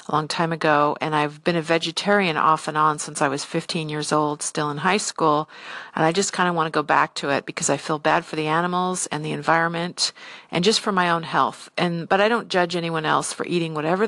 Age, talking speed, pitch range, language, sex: 50-69, 250 wpm, 155-185 Hz, English, female